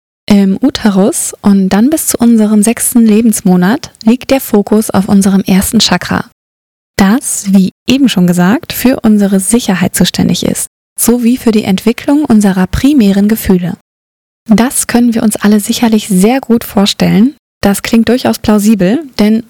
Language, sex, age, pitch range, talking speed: German, female, 20-39, 190-230 Hz, 145 wpm